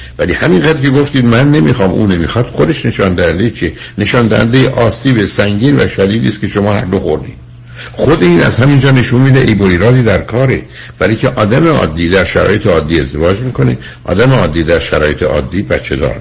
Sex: male